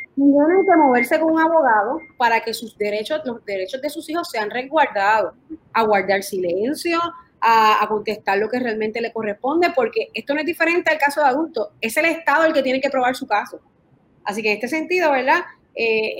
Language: English